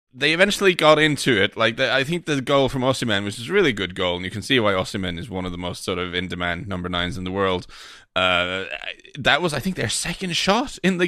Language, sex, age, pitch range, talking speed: English, male, 30-49, 95-130 Hz, 265 wpm